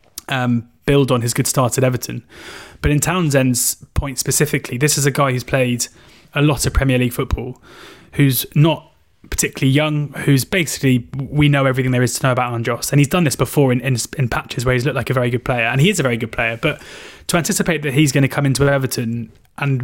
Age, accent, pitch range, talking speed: 20-39, British, 125-145 Hz, 225 wpm